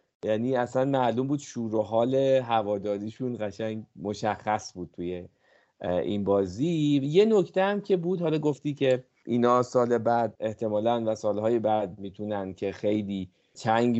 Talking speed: 135 wpm